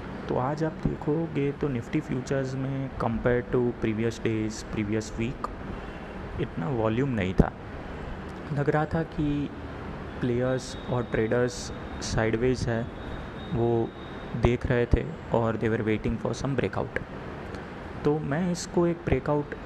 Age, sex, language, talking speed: 30-49, male, Hindi, 135 wpm